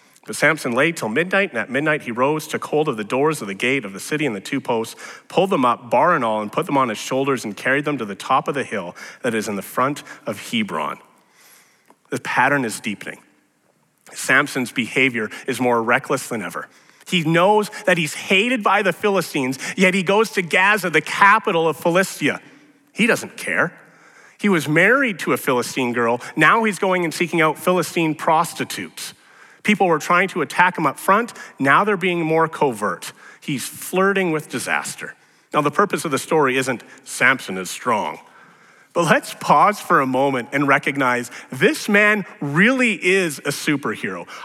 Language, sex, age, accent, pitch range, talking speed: English, male, 30-49, American, 140-200 Hz, 190 wpm